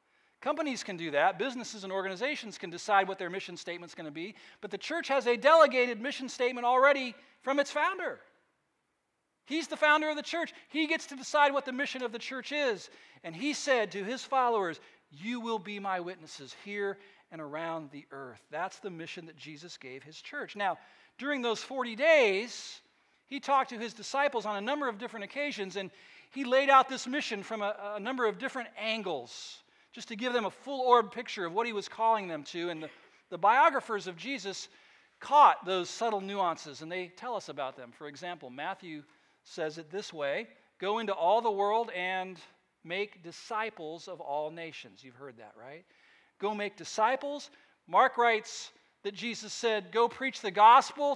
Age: 40-59